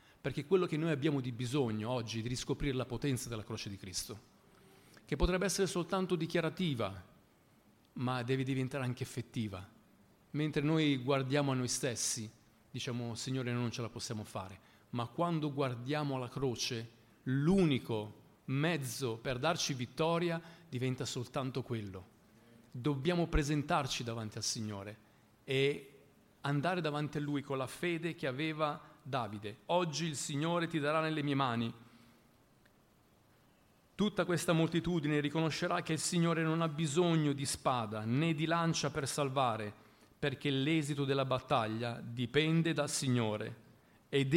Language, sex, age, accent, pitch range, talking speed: Italian, male, 40-59, native, 120-160 Hz, 140 wpm